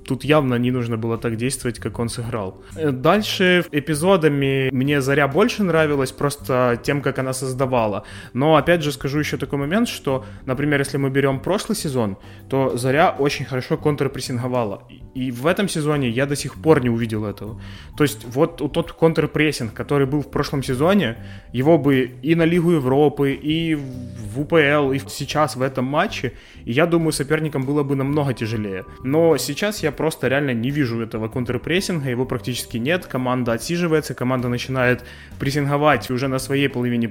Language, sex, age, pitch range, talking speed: Ukrainian, male, 20-39, 125-150 Hz, 165 wpm